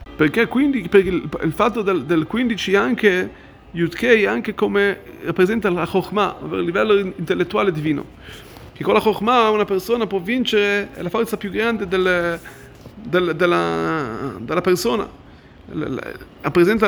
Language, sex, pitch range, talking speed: Italian, male, 180-220 Hz, 135 wpm